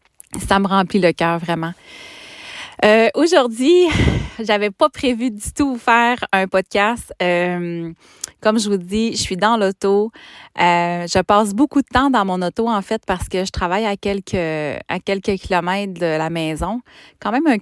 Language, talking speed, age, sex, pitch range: French, 175 wpm, 30-49, female, 180-240 Hz